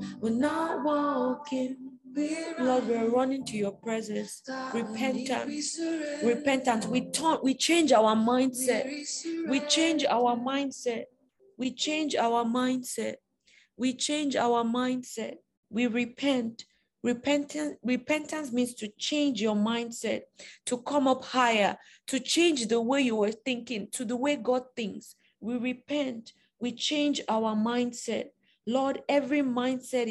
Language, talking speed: English, 135 wpm